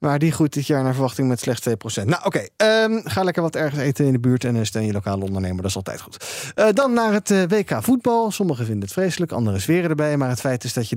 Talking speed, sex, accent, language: 275 wpm, male, Dutch, Dutch